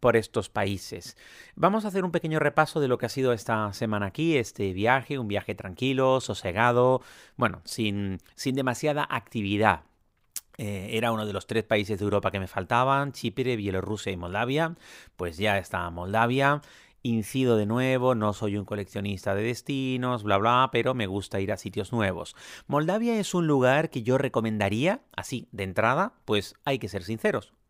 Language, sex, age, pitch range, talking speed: Spanish, male, 30-49, 105-135 Hz, 175 wpm